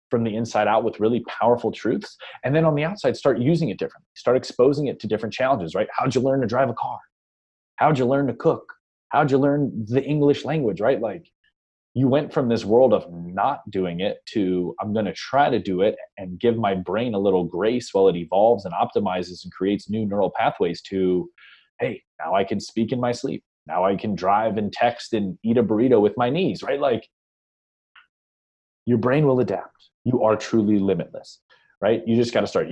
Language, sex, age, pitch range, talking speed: English, male, 30-49, 105-140 Hz, 215 wpm